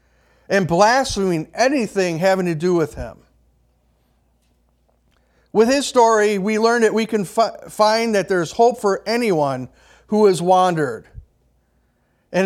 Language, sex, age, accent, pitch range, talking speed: English, male, 50-69, American, 145-210 Hz, 125 wpm